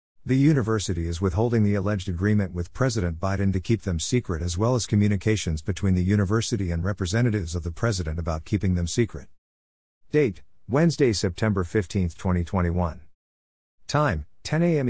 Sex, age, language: male, 50-69, English